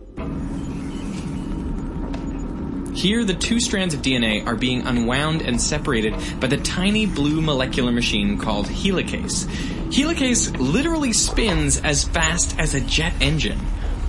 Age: 20-39